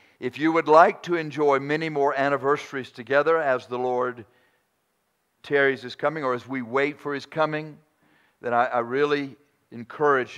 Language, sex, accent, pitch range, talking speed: English, male, American, 125-155 Hz, 160 wpm